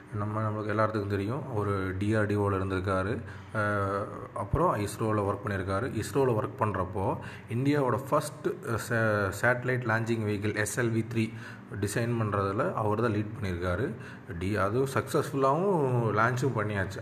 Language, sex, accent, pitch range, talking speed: Tamil, male, native, 105-125 Hz, 115 wpm